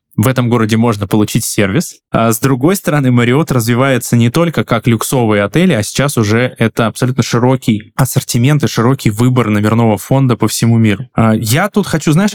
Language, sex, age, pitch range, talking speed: Russian, male, 20-39, 115-140 Hz, 180 wpm